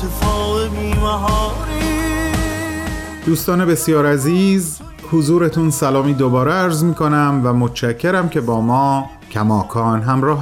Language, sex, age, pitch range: Persian, male, 30-49, 110-160 Hz